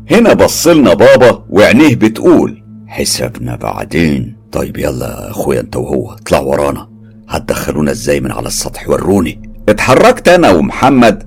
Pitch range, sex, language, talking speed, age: 105-115 Hz, male, Arabic, 120 wpm, 50-69